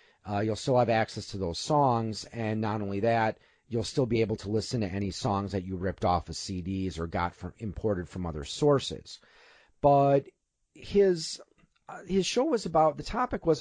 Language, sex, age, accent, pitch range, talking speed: English, male, 40-59, American, 105-145 Hz, 185 wpm